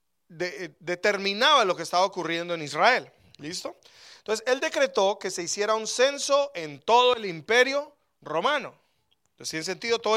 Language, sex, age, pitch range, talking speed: English, male, 30-49, 165-235 Hz, 155 wpm